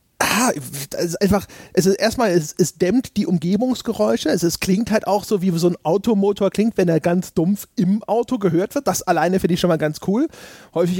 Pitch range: 175-210 Hz